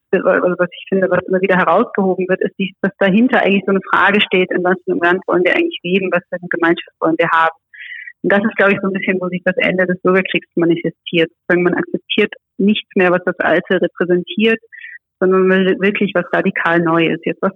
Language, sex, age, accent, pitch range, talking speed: German, female, 30-49, German, 175-200 Hz, 220 wpm